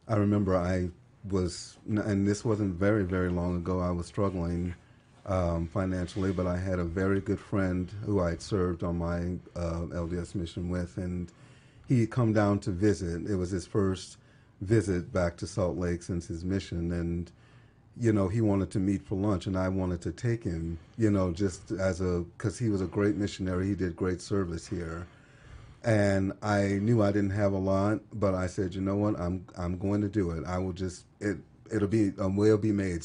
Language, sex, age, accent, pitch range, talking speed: English, male, 40-59, American, 90-105 Hz, 205 wpm